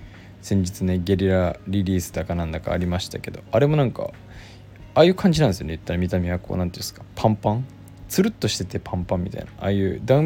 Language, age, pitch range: Japanese, 20-39, 95-110 Hz